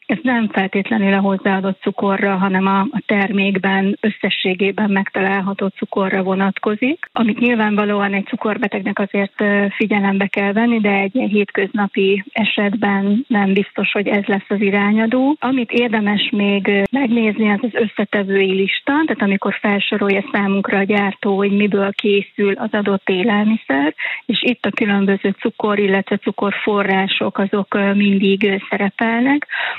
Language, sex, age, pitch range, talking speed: Hungarian, female, 30-49, 200-220 Hz, 125 wpm